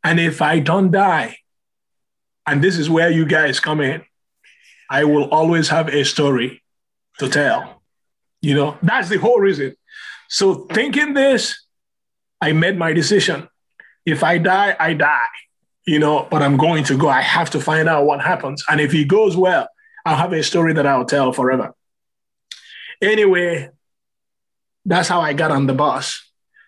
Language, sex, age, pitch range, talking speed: English, male, 30-49, 145-185 Hz, 165 wpm